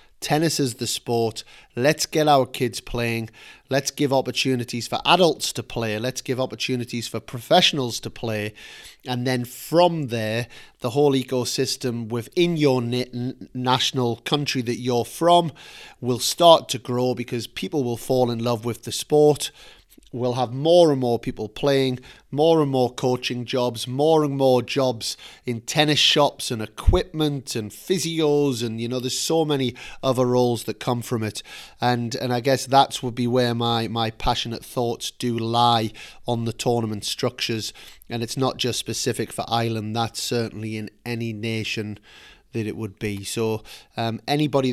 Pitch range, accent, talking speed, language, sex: 115-135 Hz, British, 165 wpm, English, male